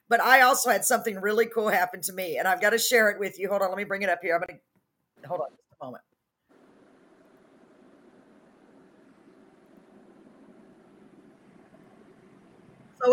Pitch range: 195-235 Hz